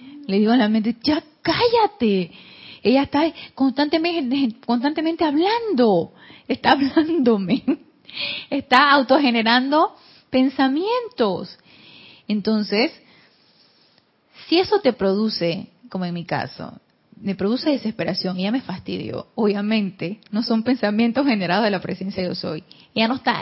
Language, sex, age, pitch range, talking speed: Spanish, female, 30-49, 200-265 Hz, 120 wpm